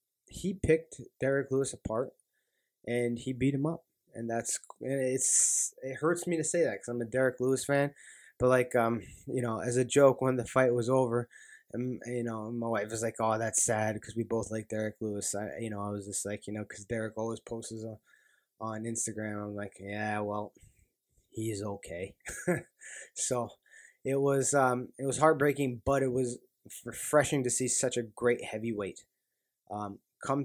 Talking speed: 185 wpm